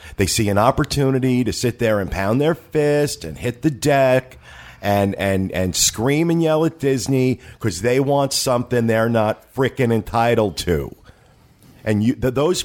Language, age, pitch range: English, 50-69, 110-140 Hz